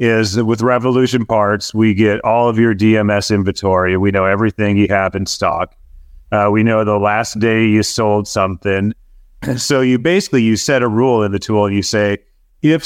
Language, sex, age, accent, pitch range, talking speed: English, male, 30-49, American, 105-125 Hz, 190 wpm